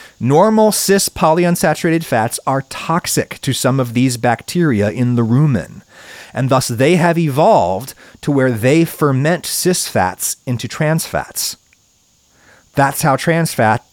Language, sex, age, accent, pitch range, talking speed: English, male, 40-59, American, 120-185 Hz, 140 wpm